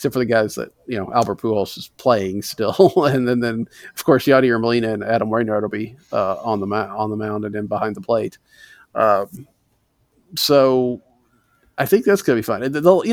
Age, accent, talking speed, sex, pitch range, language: 50-69, American, 210 wpm, male, 105-130 Hz, English